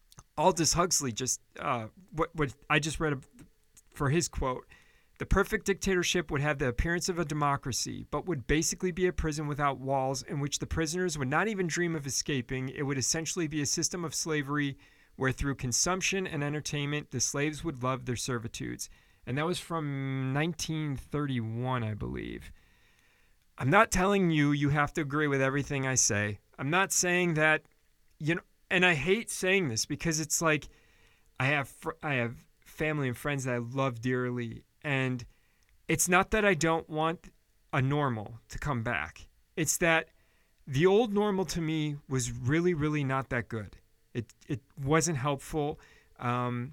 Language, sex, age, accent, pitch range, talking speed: English, male, 40-59, American, 130-170 Hz, 170 wpm